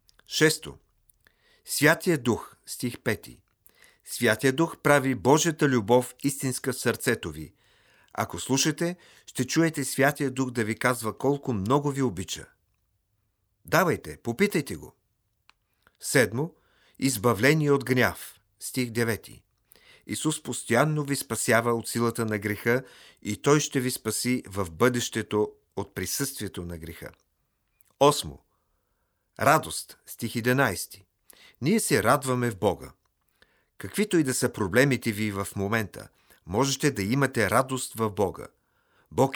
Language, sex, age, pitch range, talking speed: Bulgarian, male, 50-69, 105-140 Hz, 120 wpm